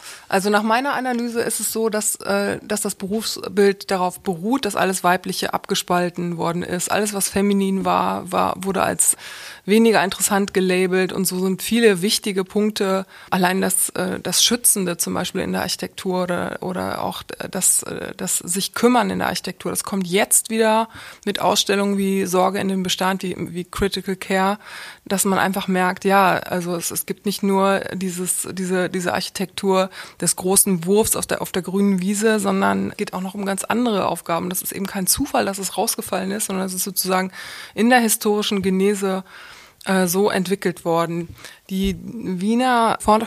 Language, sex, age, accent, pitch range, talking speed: German, female, 20-39, German, 185-210 Hz, 170 wpm